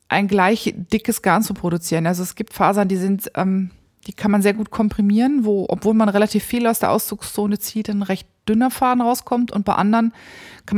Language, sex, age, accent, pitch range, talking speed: German, female, 20-39, German, 180-210 Hz, 205 wpm